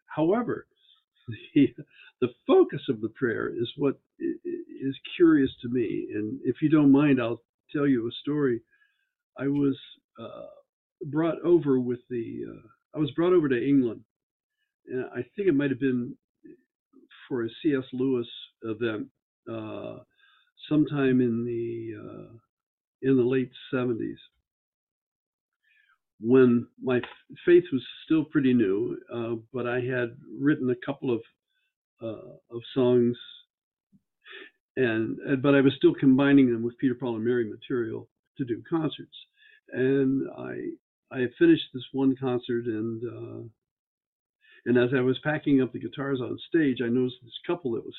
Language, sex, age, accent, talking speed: English, male, 50-69, American, 150 wpm